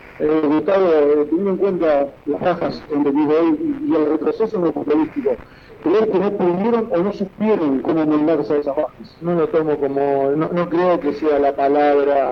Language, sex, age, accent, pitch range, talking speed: Spanish, male, 50-69, Argentinian, 145-195 Hz, 195 wpm